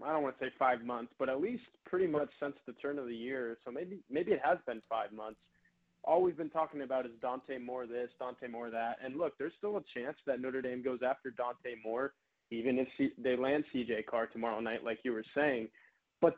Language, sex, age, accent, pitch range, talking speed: English, male, 20-39, American, 125-145 Hz, 240 wpm